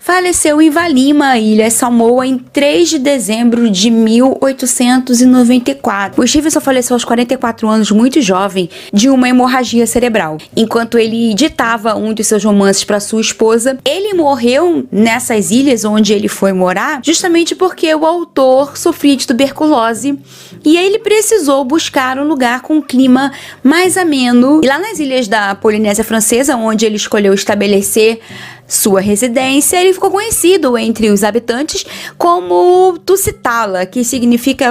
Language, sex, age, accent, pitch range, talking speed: Portuguese, female, 20-39, Brazilian, 225-300 Hz, 140 wpm